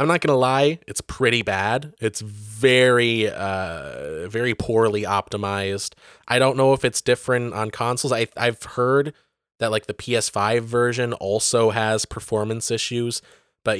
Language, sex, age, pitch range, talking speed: English, male, 20-39, 105-130 Hz, 155 wpm